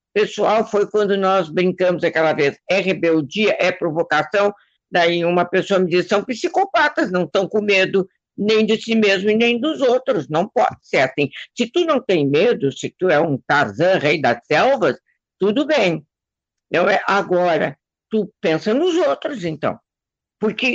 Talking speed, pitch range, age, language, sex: 165 wpm, 175-260 Hz, 60-79, Portuguese, female